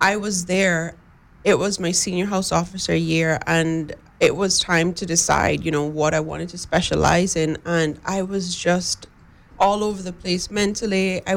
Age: 30-49